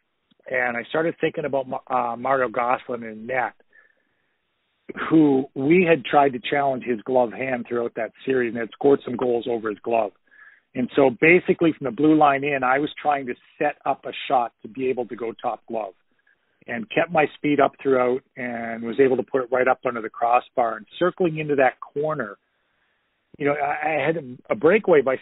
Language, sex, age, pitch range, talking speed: English, male, 40-59, 125-150 Hz, 195 wpm